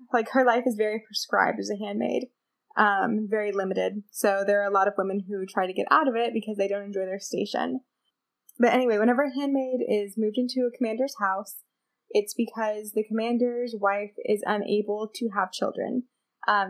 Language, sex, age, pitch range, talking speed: English, female, 20-39, 205-245 Hz, 195 wpm